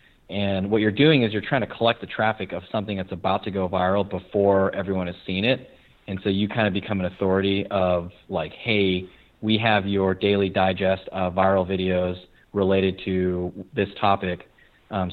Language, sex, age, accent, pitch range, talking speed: English, male, 30-49, American, 95-105 Hz, 185 wpm